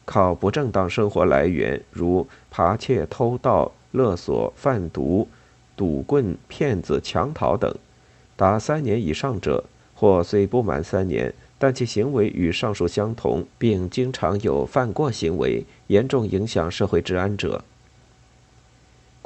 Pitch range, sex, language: 95-125 Hz, male, Chinese